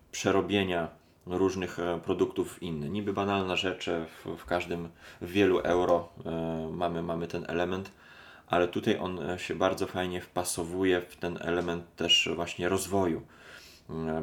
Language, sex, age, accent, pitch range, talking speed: Polish, male, 20-39, native, 85-90 Hz, 150 wpm